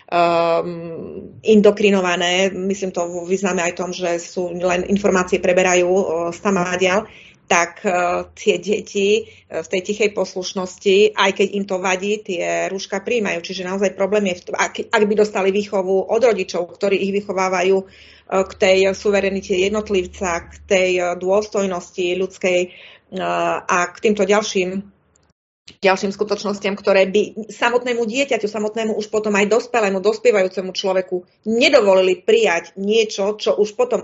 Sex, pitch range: female, 185-210 Hz